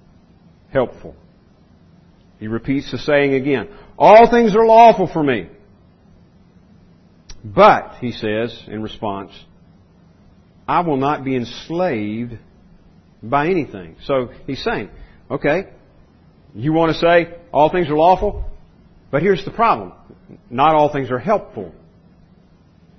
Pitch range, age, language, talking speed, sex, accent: 120-185 Hz, 50-69, English, 115 wpm, male, American